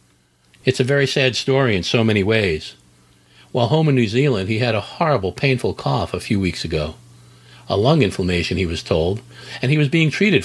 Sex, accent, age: male, American, 50-69